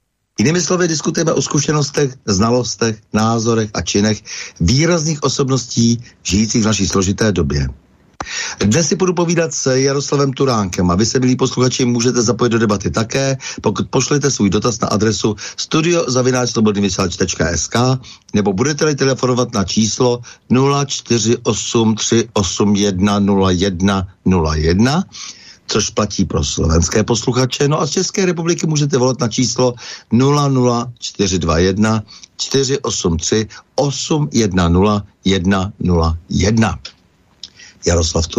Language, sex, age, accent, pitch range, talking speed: Czech, male, 60-79, native, 100-135 Hz, 95 wpm